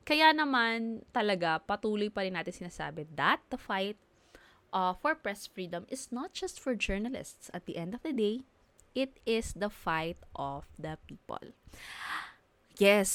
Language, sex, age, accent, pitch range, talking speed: Filipino, female, 20-39, native, 180-230 Hz, 155 wpm